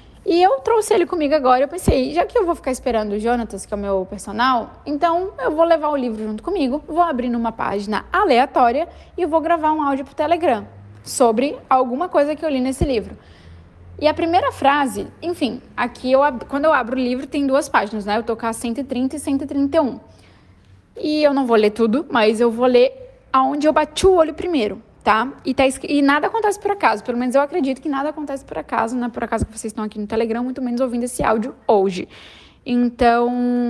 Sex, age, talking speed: female, 10-29, 215 wpm